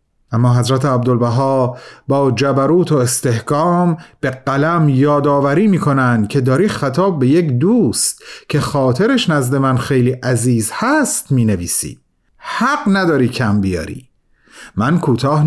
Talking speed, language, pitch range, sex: 120 wpm, Persian, 125-175 Hz, male